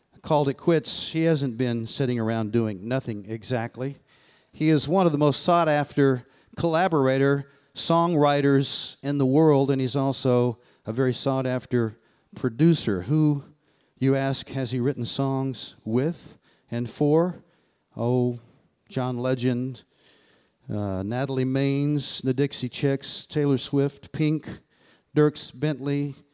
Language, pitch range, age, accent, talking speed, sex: English, 125-155 Hz, 40-59, American, 125 wpm, male